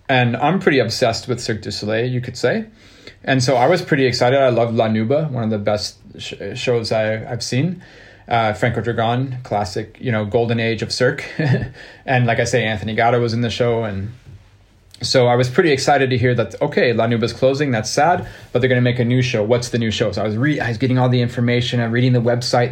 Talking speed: 240 wpm